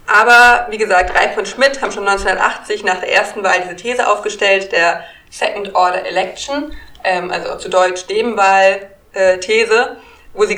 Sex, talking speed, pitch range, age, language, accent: female, 160 wpm, 185-230 Hz, 20-39, German, German